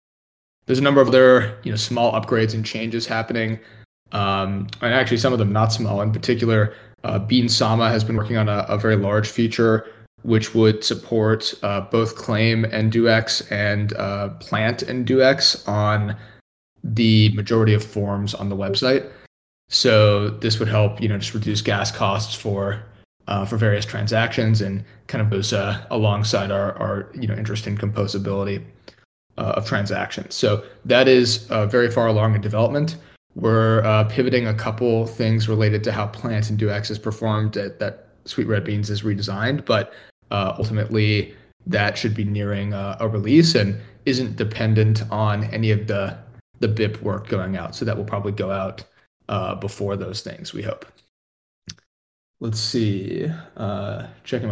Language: English